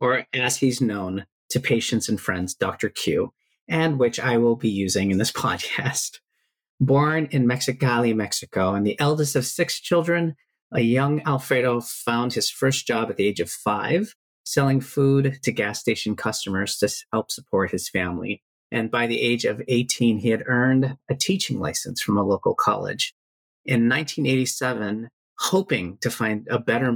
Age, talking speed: 40-59, 165 wpm